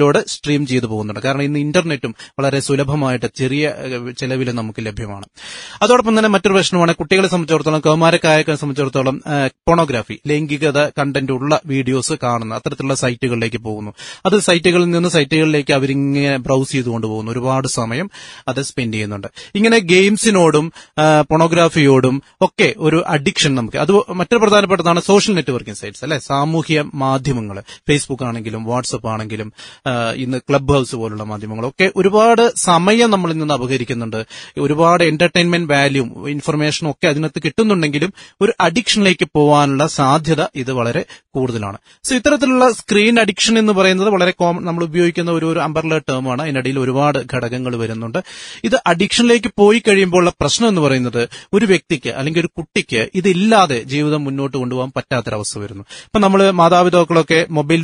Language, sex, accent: Malayalam, male, native